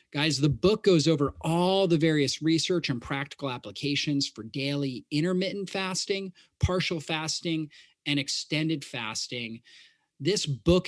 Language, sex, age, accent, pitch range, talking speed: English, male, 30-49, American, 135-170 Hz, 125 wpm